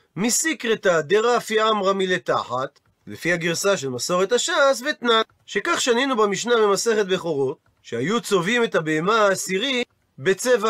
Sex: male